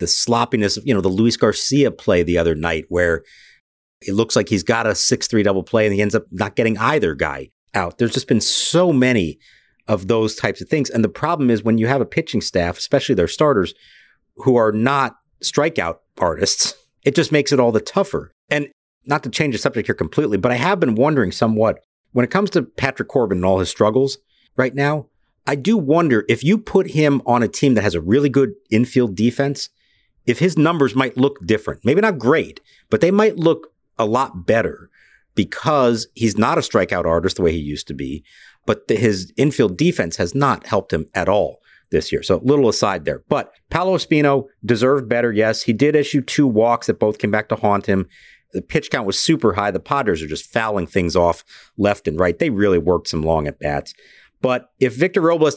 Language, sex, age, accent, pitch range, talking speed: English, male, 50-69, American, 105-140 Hz, 215 wpm